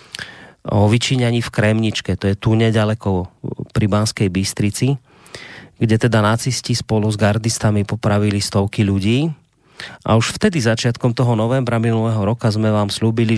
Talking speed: 140 wpm